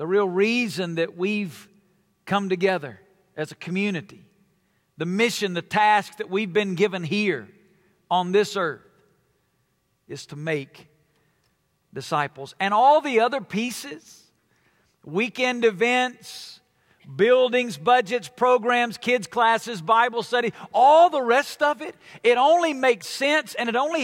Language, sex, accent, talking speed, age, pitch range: English, male, American, 130 wpm, 50-69, 190-260 Hz